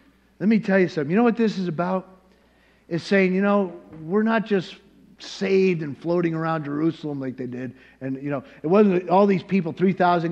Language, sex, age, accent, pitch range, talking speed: English, male, 50-69, American, 145-180 Hz, 205 wpm